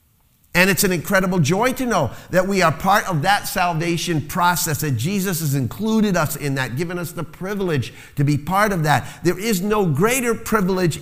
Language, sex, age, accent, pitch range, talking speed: English, male, 50-69, American, 135-195 Hz, 195 wpm